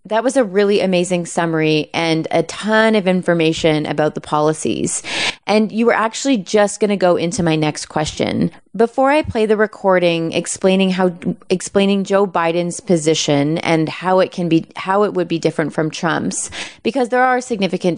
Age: 30-49